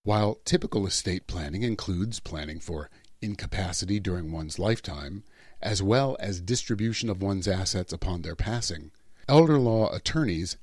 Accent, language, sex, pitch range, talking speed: American, English, male, 90-120 Hz, 135 wpm